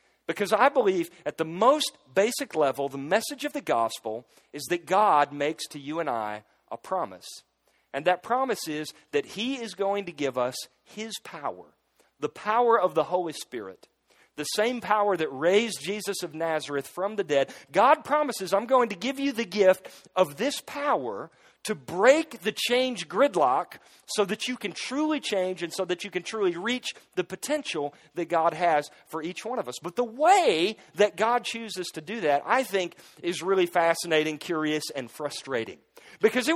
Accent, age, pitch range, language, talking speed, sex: American, 40-59, 165-240 Hz, English, 185 wpm, male